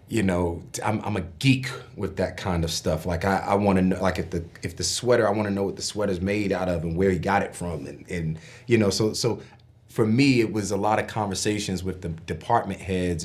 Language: English